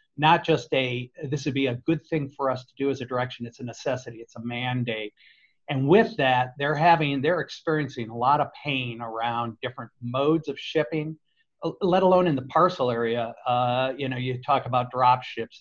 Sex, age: male, 50-69